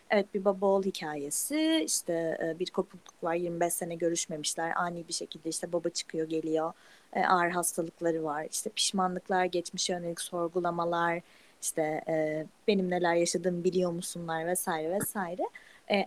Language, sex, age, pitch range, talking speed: Turkish, female, 30-49, 175-205 Hz, 140 wpm